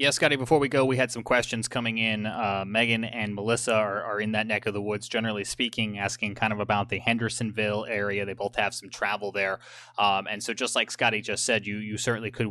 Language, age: English, 20-39